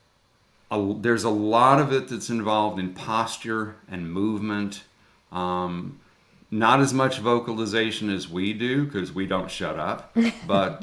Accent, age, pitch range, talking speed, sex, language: American, 50-69, 95-120 Hz, 140 wpm, male, English